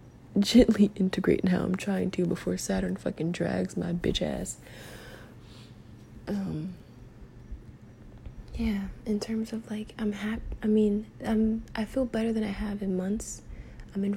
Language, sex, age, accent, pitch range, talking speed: English, female, 20-39, American, 155-205 Hz, 145 wpm